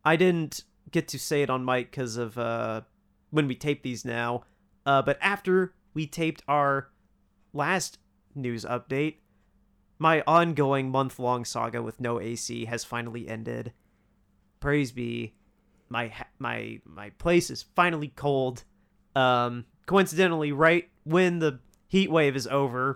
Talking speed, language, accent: 135 wpm, English, American